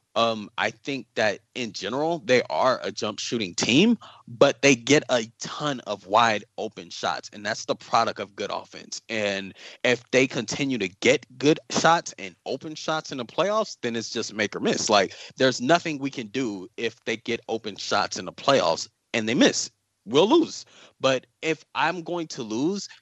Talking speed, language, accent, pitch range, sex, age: 195 wpm, English, American, 105-140 Hz, male, 20-39